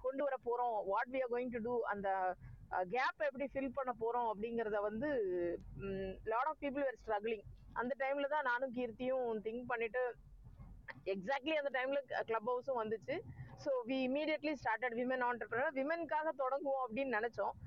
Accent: native